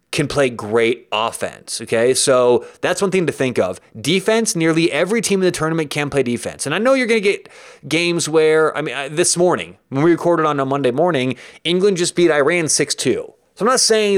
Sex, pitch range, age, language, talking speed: male, 130-175 Hz, 30-49, English, 215 wpm